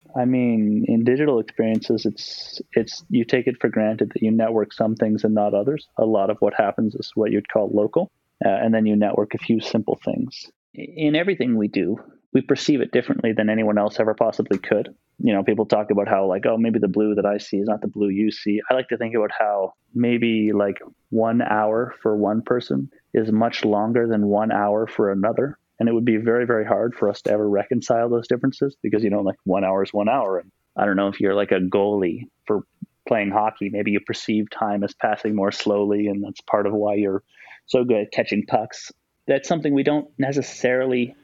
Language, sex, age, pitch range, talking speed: English, male, 30-49, 105-125 Hz, 225 wpm